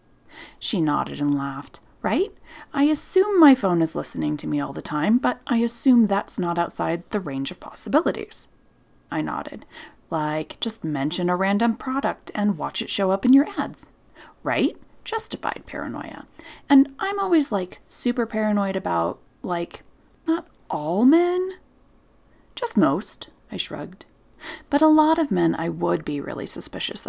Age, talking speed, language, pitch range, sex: 30-49, 155 wpm, English, 185-305 Hz, female